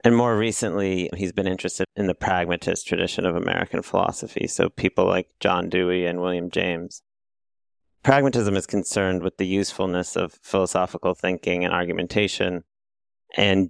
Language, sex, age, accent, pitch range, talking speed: English, male, 30-49, American, 90-100 Hz, 145 wpm